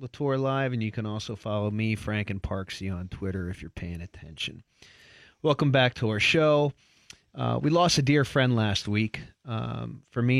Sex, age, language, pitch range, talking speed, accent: male, 30-49, English, 95-110 Hz, 190 wpm, American